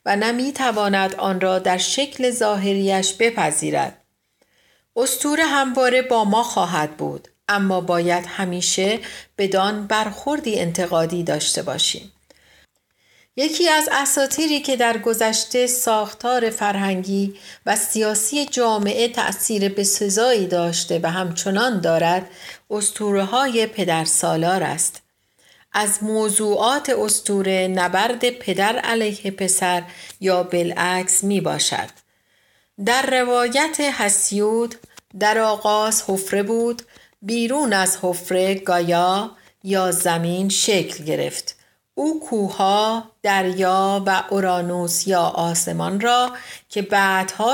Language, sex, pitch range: Persian, female, 185-235 Hz